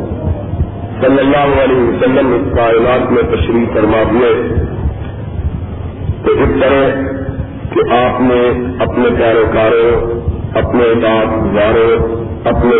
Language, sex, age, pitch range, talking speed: Urdu, male, 50-69, 90-125 Hz, 105 wpm